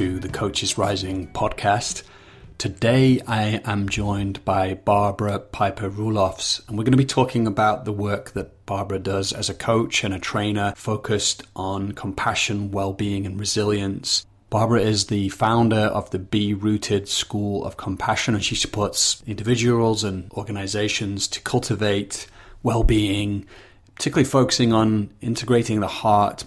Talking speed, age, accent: 145 wpm, 30-49, British